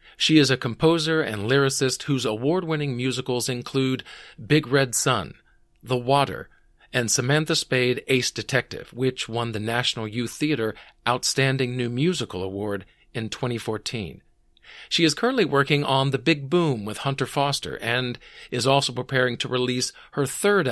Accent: American